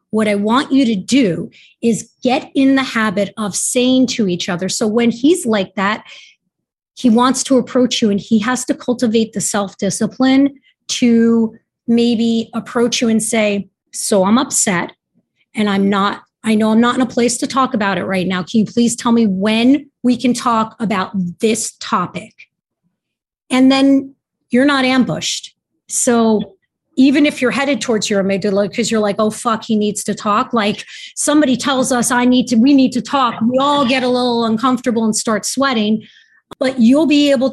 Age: 30-49